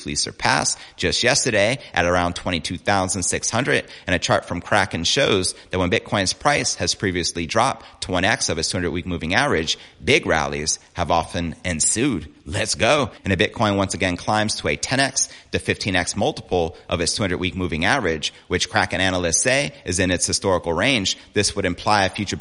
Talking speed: 175 wpm